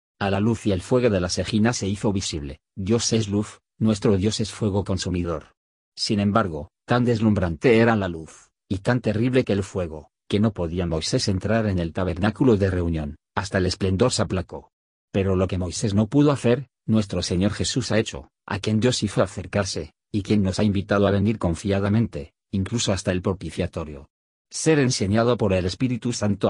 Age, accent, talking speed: 40-59, Spanish, 190 wpm